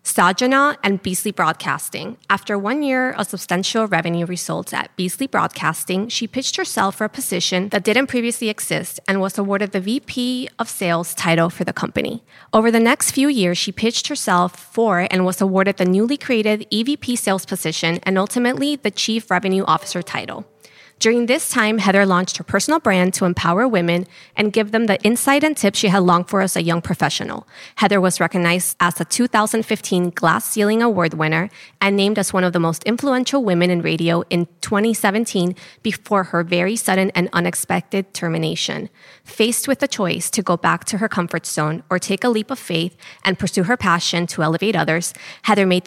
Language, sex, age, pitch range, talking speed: English, female, 20-39, 175-225 Hz, 185 wpm